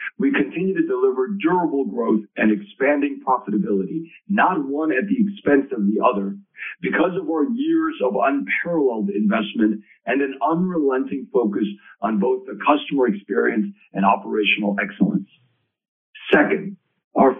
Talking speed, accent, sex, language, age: 130 wpm, American, male, English, 50-69